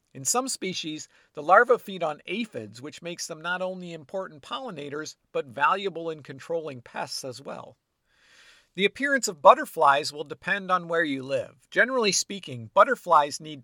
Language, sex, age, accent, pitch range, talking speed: English, male, 50-69, American, 145-195 Hz, 160 wpm